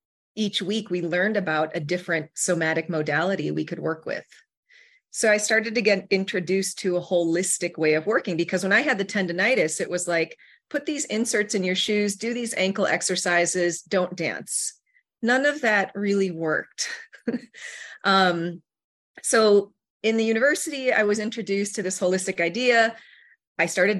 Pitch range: 165-210 Hz